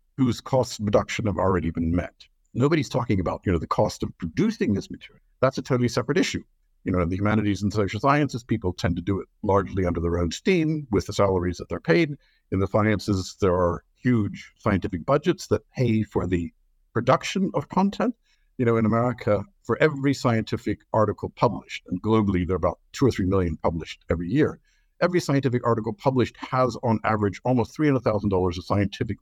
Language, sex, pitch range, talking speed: English, male, 95-125 Hz, 190 wpm